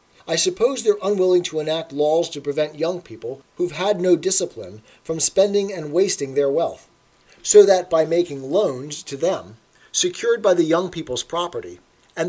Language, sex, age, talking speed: English, male, 40-59, 170 wpm